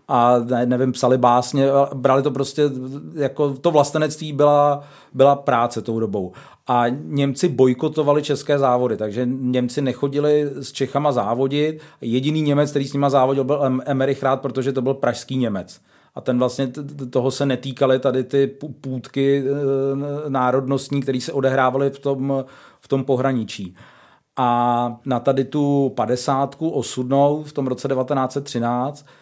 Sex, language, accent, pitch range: male, Czech, native, 125-140 Hz